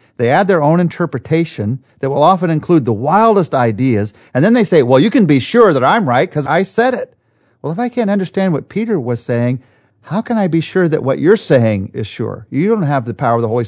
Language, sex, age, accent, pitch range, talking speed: English, male, 40-59, American, 115-155 Hz, 245 wpm